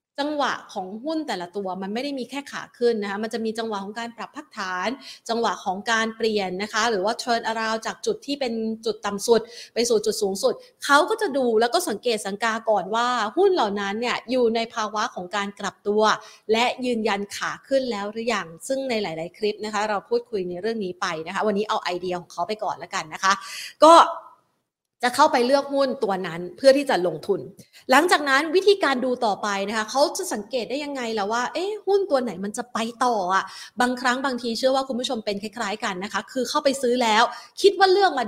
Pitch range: 205-270 Hz